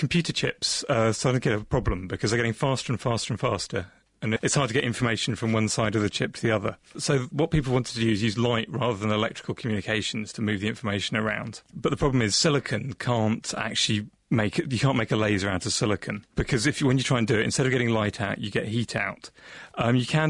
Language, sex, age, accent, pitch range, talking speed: English, male, 30-49, British, 110-130 Hz, 255 wpm